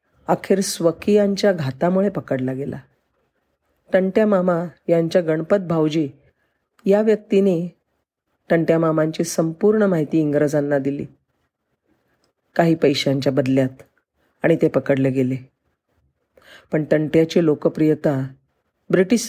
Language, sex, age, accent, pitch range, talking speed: Marathi, female, 40-59, native, 145-195 Hz, 90 wpm